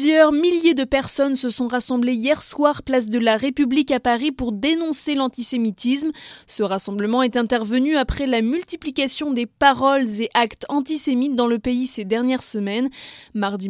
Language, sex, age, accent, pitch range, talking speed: French, female, 20-39, French, 230-275 Hz, 160 wpm